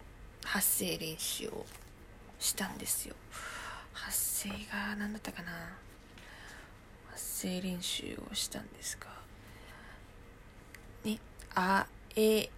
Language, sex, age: Japanese, female, 20-39